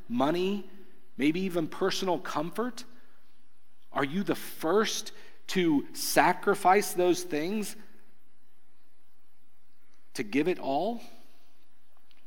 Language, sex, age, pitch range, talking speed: English, male, 40-59, 135-185 Hz, 85 wpm